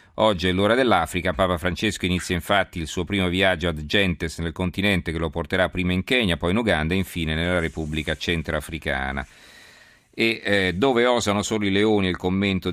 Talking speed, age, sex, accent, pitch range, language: 185 wpm, 40-59, male, native, 80-105 Hz, Italian